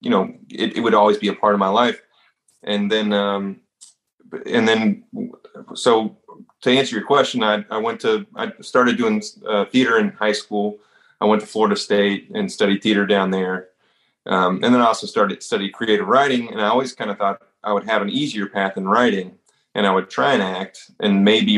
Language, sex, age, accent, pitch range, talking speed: English, male, 30-49, American, 100-120 Hz, 210 wpm